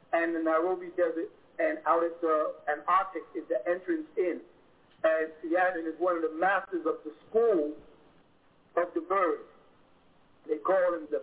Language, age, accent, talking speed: English, 50-69, American, 160 wpm